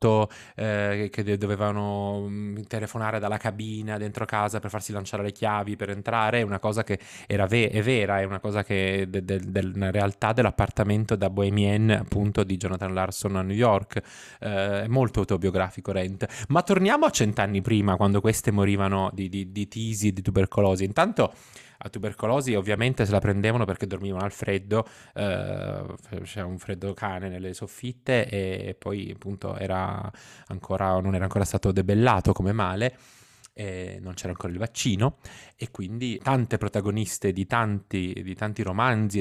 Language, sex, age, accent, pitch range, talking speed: Italian, male, 20-39, native, 95-110 Hz, 165 wpm